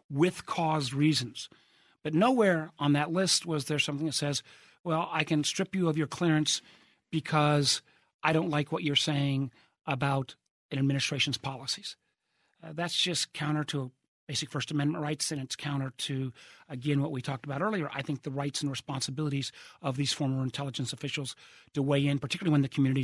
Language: English